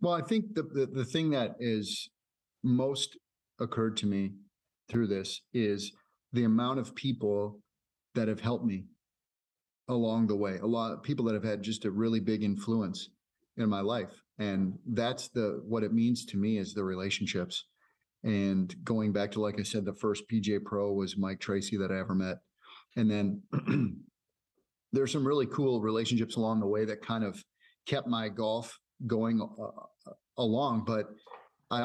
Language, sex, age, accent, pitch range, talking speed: English, male, 40-59, American, 105-120 Hz, 175 wpm